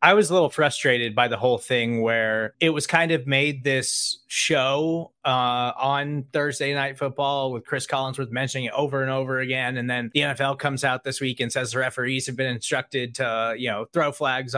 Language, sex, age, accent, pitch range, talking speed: English, male, 20-39, American, 120-145 Hz, 210 wpm